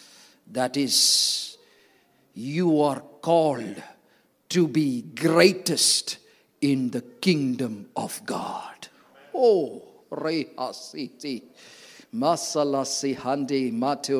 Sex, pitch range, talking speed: male, 125-205 Hz, 70 wpm